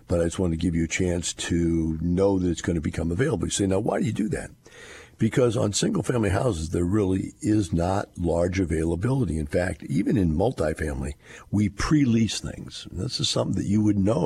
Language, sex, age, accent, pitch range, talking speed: English, male, 50-69, American, 85-130 Hz, 215 wpm